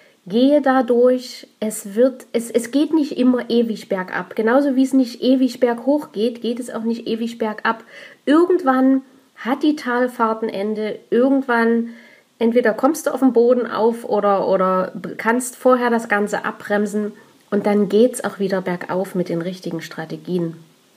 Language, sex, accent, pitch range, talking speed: German, female, German, 210-265 Hz, 160 wpm